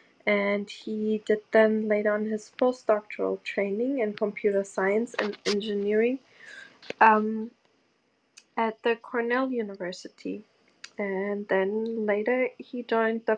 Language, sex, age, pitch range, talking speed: English, female, 20-39, 200-230 Hz, 110 wpm